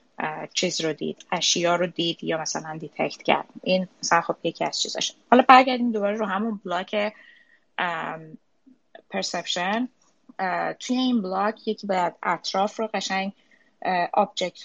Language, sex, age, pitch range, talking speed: Persian, female, 20-39, 170-215 Hz, 140 wpm